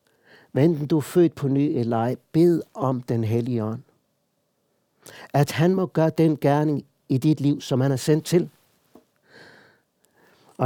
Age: 60-79